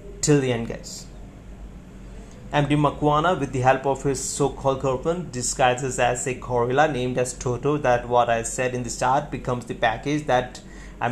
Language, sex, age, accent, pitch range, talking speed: Hindi, male, 30-49, native, 125-145 Hz, 175 wpm